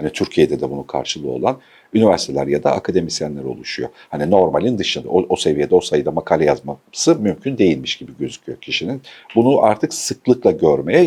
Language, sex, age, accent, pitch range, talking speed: Turkish, male, 50-69, native, 100-145 Hz, 165 wpm